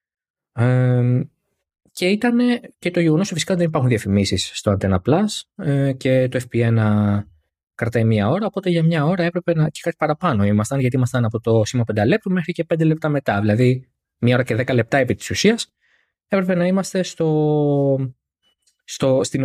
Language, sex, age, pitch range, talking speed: Greek, male, 20-39, 110-165 Hz, 175 wpm